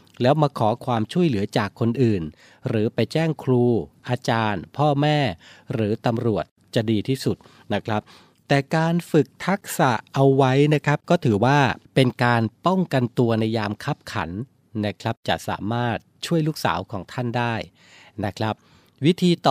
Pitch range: 110-145 Hz